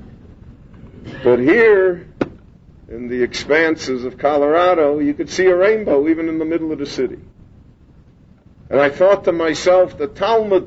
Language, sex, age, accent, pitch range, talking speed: English, male, 50-69, American, 145-185 Hz, 145 wpm